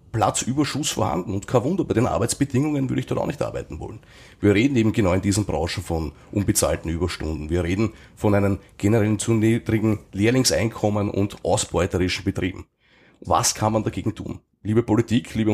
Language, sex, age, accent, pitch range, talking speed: German, male, 30-49, Austrian, 90-110 Hz, 170 wpm